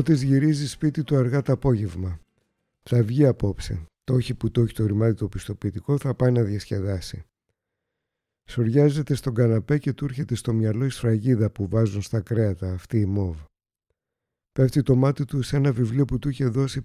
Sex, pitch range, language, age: male, 105-130 Hz, Greek, 50-69